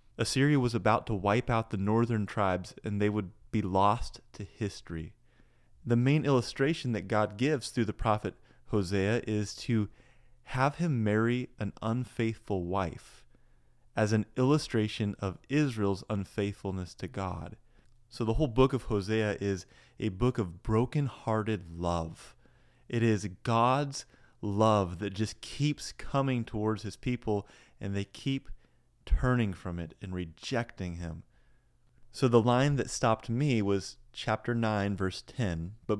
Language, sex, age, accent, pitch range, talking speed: English, male, 30-49, American, 100-125 Hz, 145 wpm